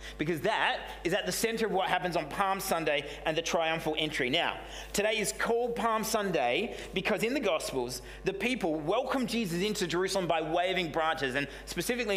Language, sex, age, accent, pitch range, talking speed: English, male, 30-49, Australian, 160-210 Hz, 180 wpm